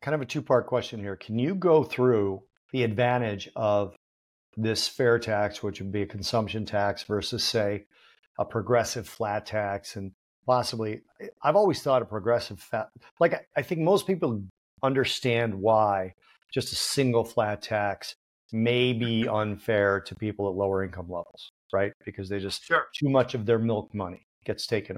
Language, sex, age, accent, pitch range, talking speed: English, male, 40-59, American, 100-120 Hz, 165 wpm